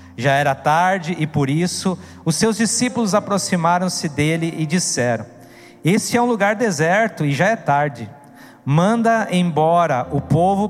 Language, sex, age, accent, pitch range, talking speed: Portuguese, male, 50-69, Brazilian, 140-185 Hz, 145 wpm